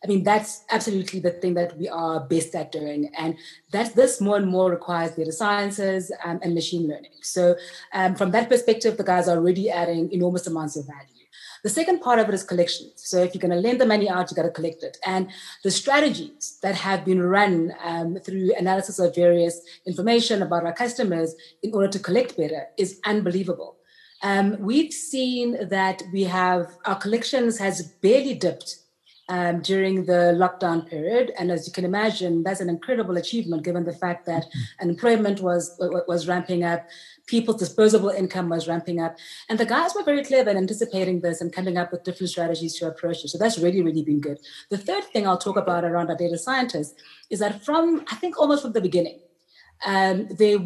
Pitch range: 170-210 Hz